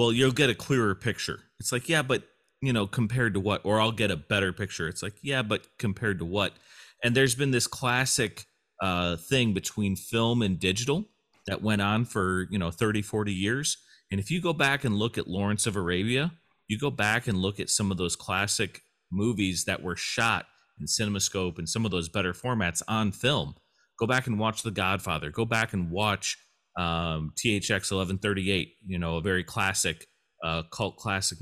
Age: 30-49